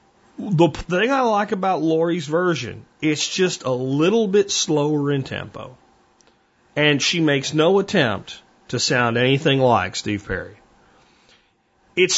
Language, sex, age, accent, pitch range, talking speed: German, male, 40-59, American, 130-180 Hz, 135 wpm